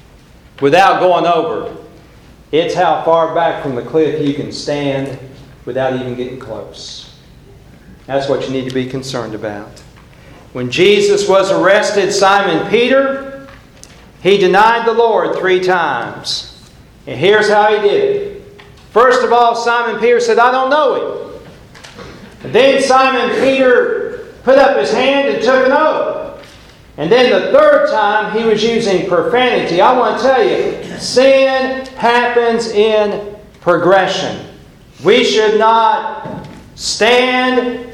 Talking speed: 135 wpm